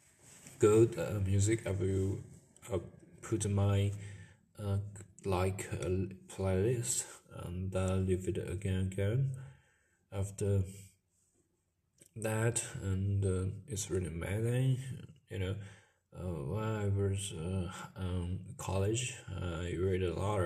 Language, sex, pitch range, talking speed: English, male, 95-110 Hz, 115 wpm